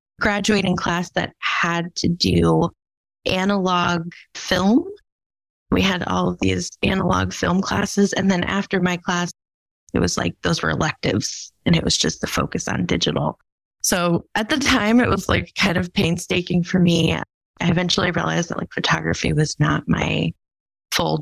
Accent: American